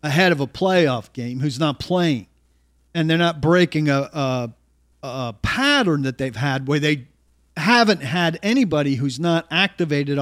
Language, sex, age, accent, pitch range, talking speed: English, male, 50-69, American, 130-170 Hz, 155 wpm